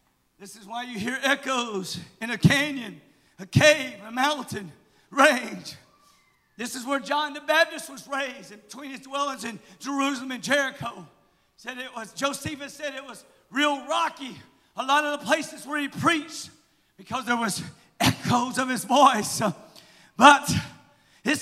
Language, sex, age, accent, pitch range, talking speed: English, male, 50-69, American, 250-315 Hz, 155 wpm